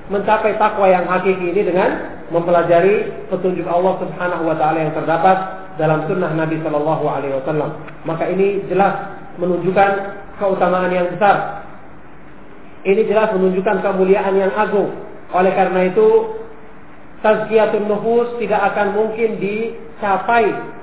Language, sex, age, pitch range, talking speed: Malay, male, 40-59, 180-205 Hz, 120 wpm